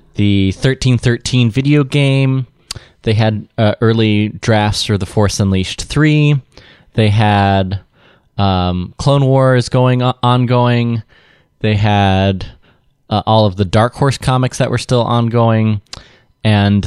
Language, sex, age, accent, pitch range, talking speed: English, male, 20-39, American, 105-130 Hz, 130 wpm